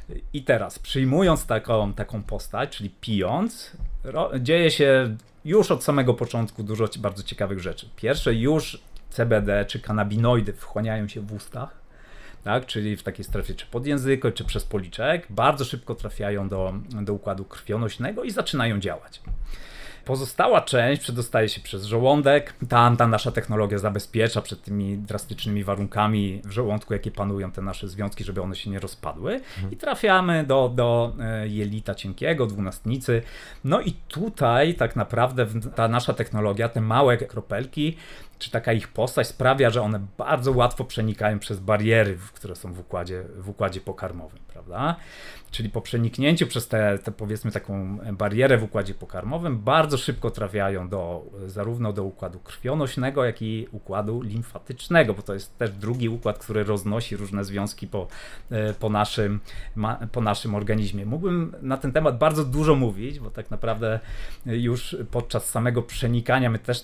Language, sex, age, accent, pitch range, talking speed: Polish, male, 30-49, native, 105-125 Hz, 145 wpm